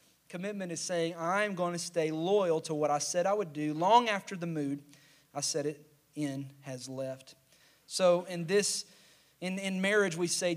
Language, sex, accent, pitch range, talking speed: English, male, American, 150-180 Hz, 185 wpm